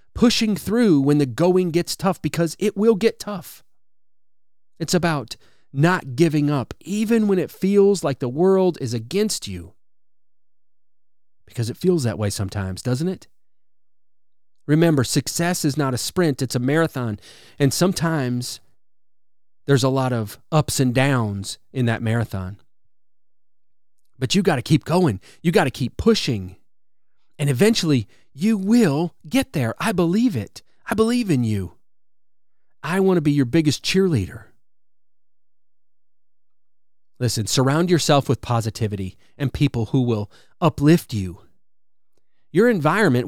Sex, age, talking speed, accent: male, 30-49, 140 wpm, American